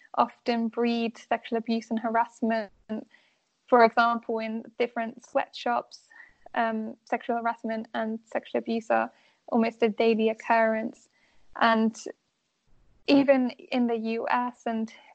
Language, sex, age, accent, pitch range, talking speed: English, female, 10-29, British, 230-255 Hz, 110 wpm